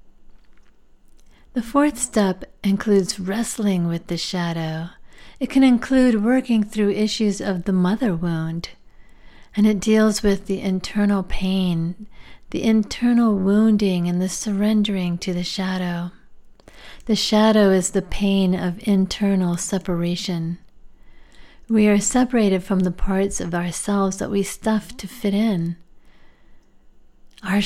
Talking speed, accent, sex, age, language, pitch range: 125 wpm, American, female, 40-59, English, 180-210 Hz